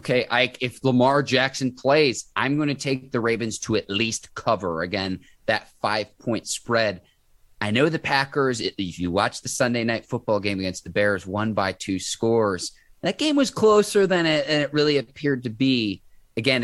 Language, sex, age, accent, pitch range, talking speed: English, male, 30-49, American, 110-145 Hz, 185 wpm